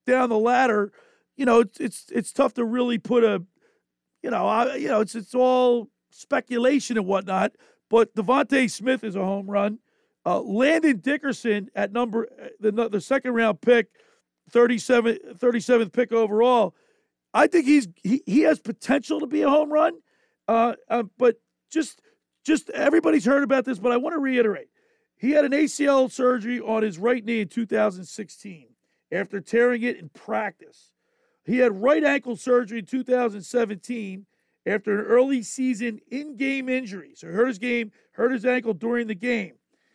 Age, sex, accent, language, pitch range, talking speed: 40-59, male, American, English, 220-265 Hz, 165 wpm